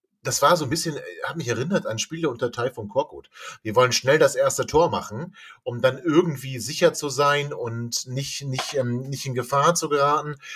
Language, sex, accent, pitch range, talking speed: German, male, German, 140-190 Hz, 205 wpm